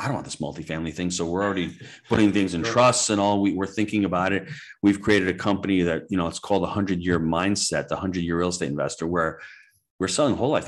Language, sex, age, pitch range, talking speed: English, male, 30-49, 85-100 Hz, 245 wpm